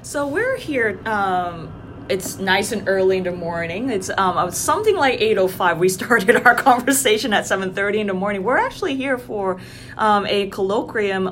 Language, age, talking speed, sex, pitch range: English, 20-39, 185 wpm, female, 165-210 Hz